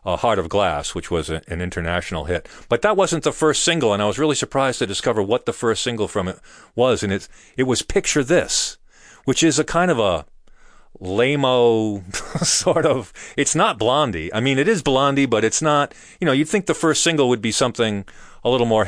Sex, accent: male, American